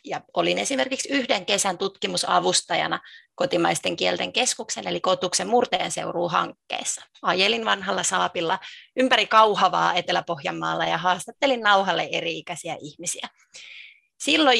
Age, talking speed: 30-49, 100 wpm